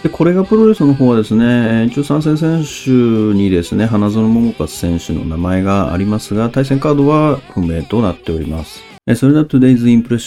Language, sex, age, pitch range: Japanese, male, 40-59, 90-125 Hz